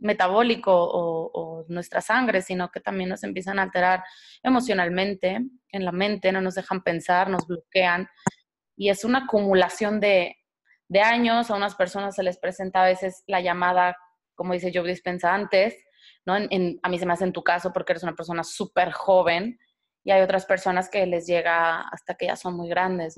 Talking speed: 190 wpm